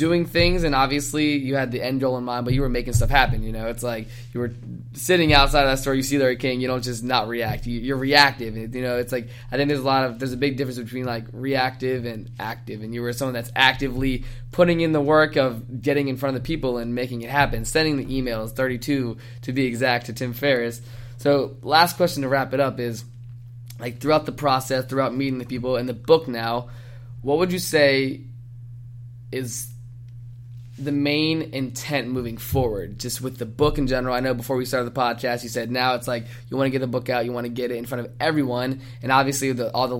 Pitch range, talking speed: 120-135 Hz, 235 wpm